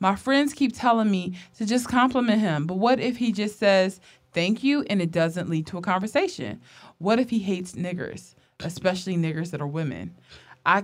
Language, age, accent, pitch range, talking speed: English, 20-39, American, 170-230 Hz, 195 wpm